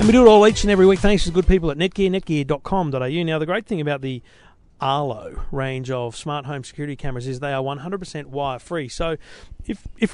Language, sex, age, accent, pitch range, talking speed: English, male, 40-59, Australian, 135-175 Hz, 225 wpm